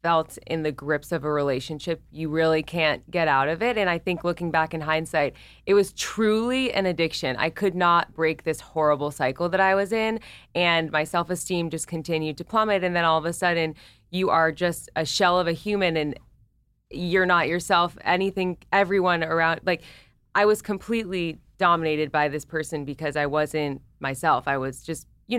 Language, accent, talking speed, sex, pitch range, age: English, American, 190 wpm, female, 155-180 Hz, 20-39